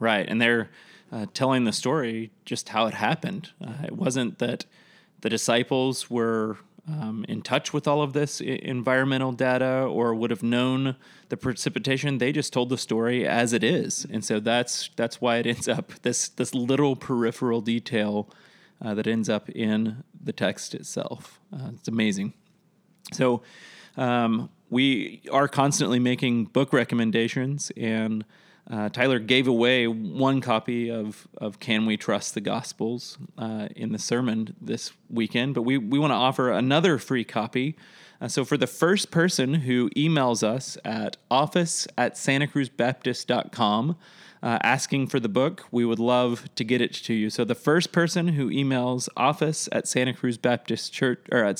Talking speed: 160 wpm